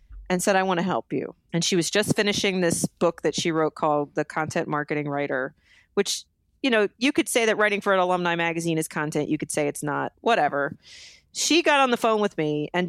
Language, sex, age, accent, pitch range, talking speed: English, female, 30-49, American, 165-220 Hz, 235 wpm